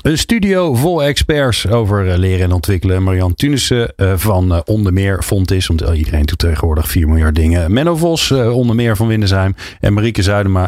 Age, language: 40-59, Dutch